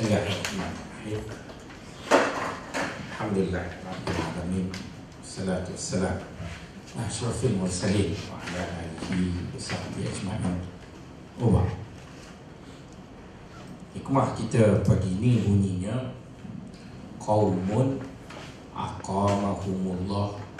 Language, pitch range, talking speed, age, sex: Malay, 95-110 Hz, 50 wpm, 50-69, male